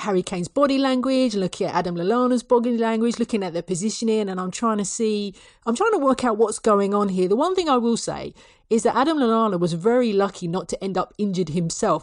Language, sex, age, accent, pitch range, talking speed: English, female, 40-59, British, 180-240 Hz, 235 wpm